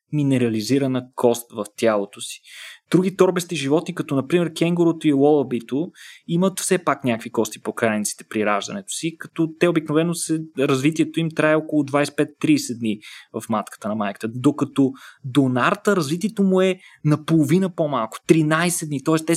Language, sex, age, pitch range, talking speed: Bulgarian, male, 20-39, 140-175 Hz, 150 wpm